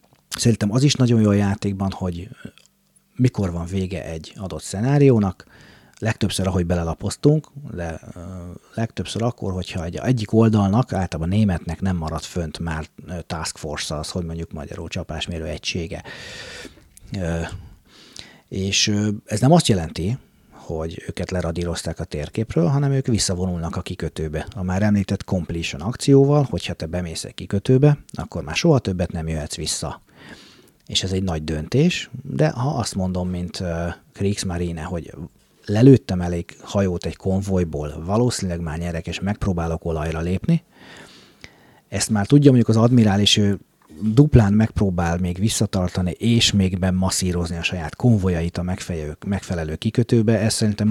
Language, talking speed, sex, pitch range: Hungarian, 135 wpm, male, 85-110 Hz